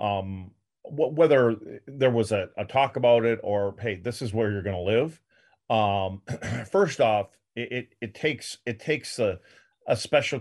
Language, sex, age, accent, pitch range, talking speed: English, male, 40-59, American, 100-120 Hz, 165 wpm